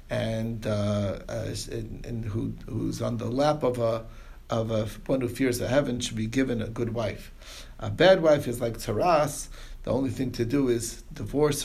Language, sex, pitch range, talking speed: English, male, 115-130 Hz, 195 wpm